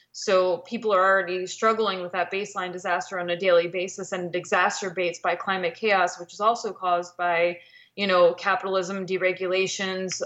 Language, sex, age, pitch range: English, female, 20-39, 180-205 Hz